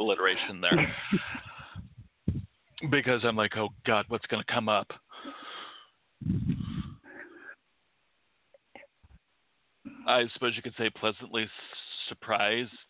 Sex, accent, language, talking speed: male, American, English, 90 wpm